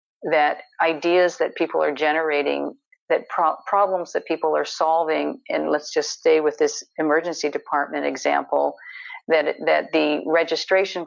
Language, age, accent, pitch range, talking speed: English, 50-69, American, 150-195 Hz, 135 wpm